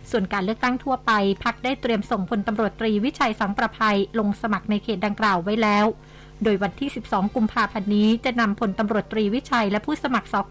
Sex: female